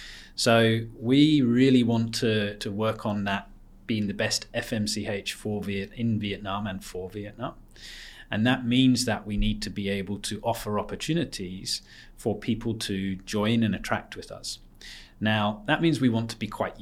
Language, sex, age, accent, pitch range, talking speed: English, male, 30-49, British, 100-115 Hz, 165 wpm